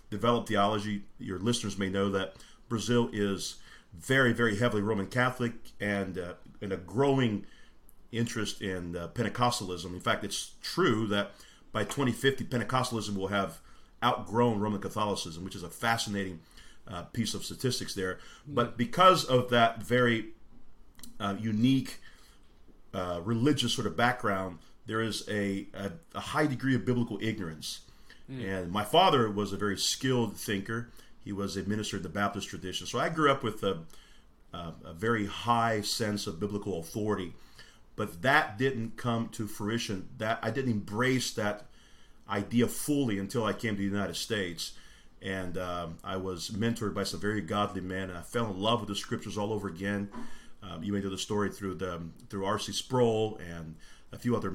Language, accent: English, American